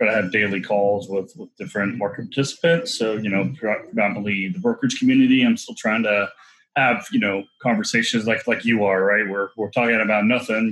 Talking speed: 200 wpm